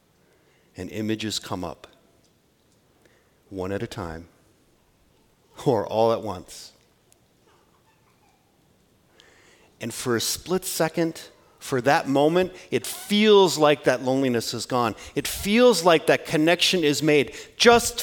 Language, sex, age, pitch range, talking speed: English, male, 50-69, 125-175 Hz, 115 wpm